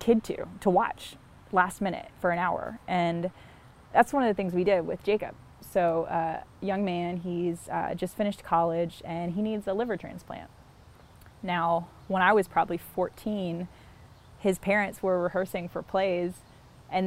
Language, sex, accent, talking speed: English, female, American, 170 wpm